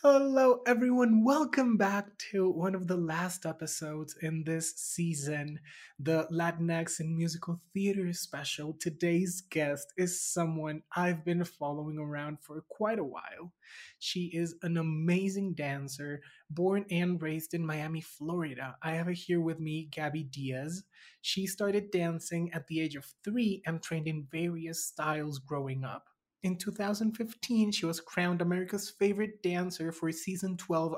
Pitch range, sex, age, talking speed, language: 160-195 Hz, male, 20-39, 145 wpm, English